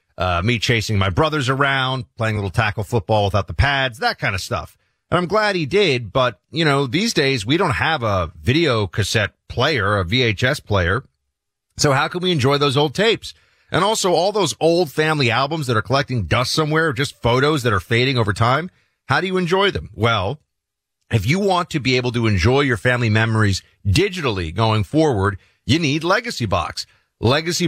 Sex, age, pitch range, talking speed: male, 40-59, 110-155 Hz, 195 wpm